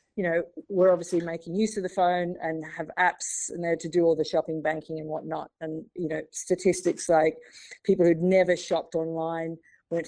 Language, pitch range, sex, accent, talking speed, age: English, 160-180 Hz, female, Australian, 195 wpm, 40-59